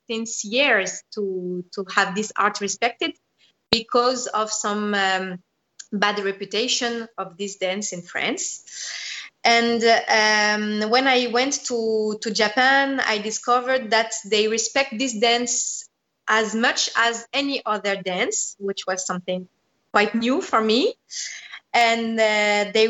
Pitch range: 205-250 Hz